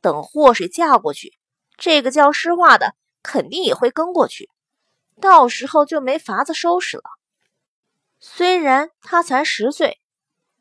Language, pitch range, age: Chinese, 235-345 Hz, 20-39